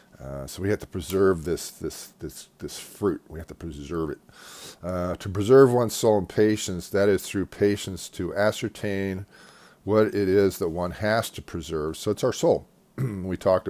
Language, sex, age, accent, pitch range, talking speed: English, male, 40-59, American, 85-105 Hz, 190 wpm